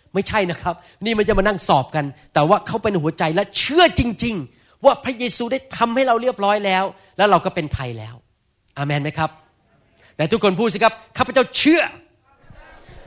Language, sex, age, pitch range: Thai, male, 30-49, 125-190 Hz